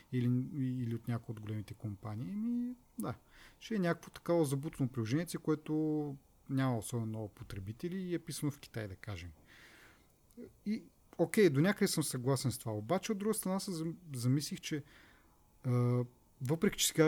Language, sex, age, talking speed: Bulgarian, male, 30-49, 160 wpm